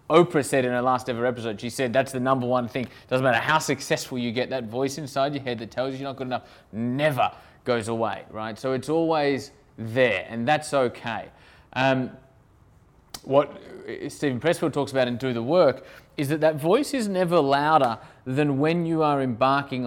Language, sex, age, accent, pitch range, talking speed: English, male, 20-39, Australian, 120-145 Hz, 195 wpm